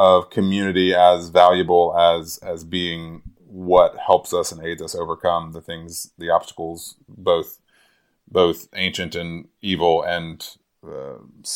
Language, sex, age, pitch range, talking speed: English, male, 30-49, 85-100 Hz, 130 wpm